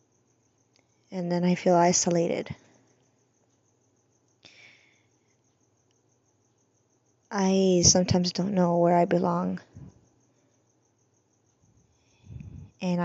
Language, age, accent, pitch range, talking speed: English, 20-39, American, 125-185 Hz, 60 wpm